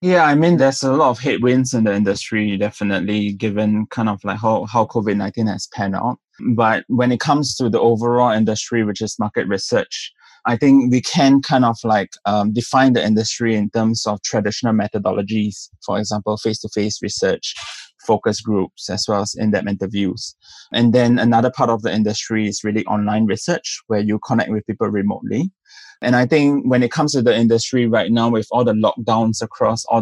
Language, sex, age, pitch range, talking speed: English, male, 20-39, 105-125 Hz, 190 wpm